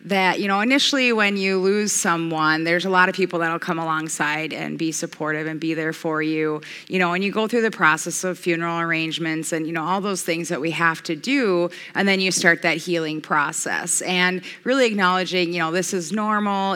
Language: English